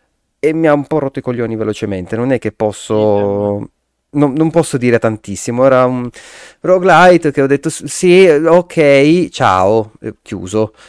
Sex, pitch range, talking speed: male, 110-145 Hz, 165 wpm